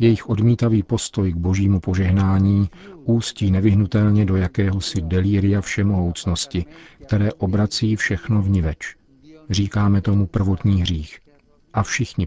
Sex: male